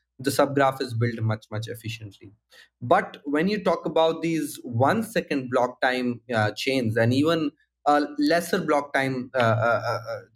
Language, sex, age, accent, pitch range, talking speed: English, male, 20-39, Indian, 125-170 Hz, 155 wpm